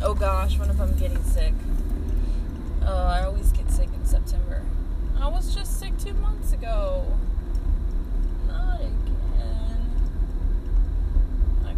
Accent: American